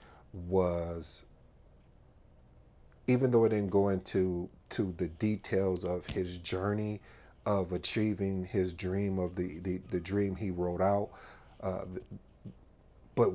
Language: English